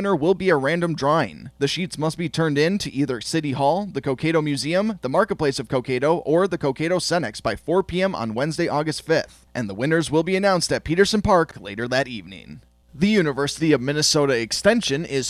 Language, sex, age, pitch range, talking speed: English, male, 20-39, 135-195 Hz, 200 wpm